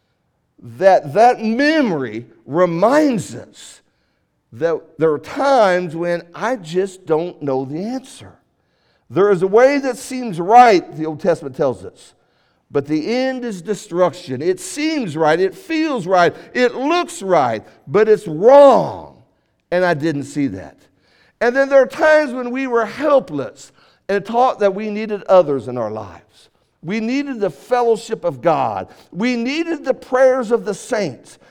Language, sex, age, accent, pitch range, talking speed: English, male, 60-79, American, 175-265 Hz, 155 wpm